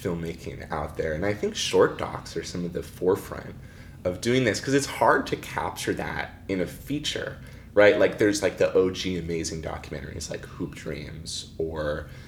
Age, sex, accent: 20-39, male, American